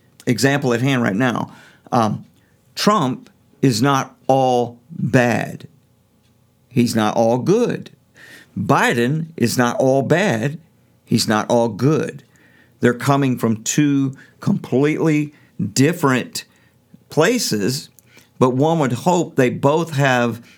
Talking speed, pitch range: 110 wpm, 120-145 Hz